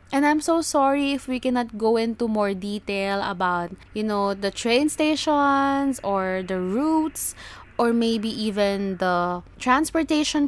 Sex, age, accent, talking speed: female, 20-39, Filipino, 145 wpm